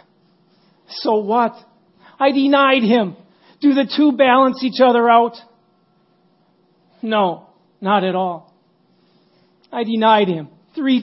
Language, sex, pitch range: English, male, 185-215 Hz